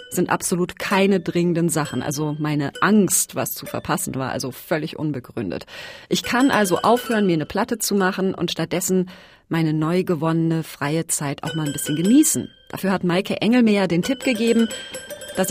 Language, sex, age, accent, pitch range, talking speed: German, female, 30-49, German, 160-220 Hz, 170 wpm